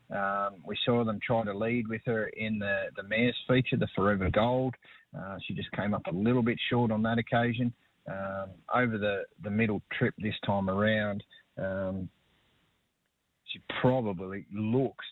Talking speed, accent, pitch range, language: 165 wpm, Australian, 100-125 Hz, English